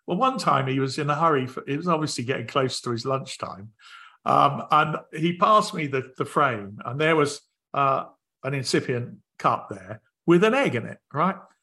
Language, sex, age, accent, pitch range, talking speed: English, male, 50-69, British, 130-175 Hz, 200 wpm